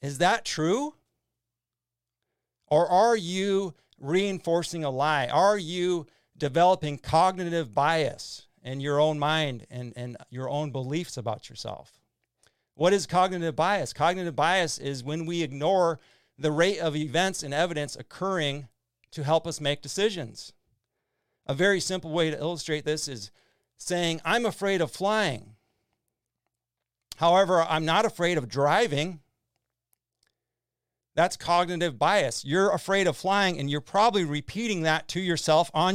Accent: American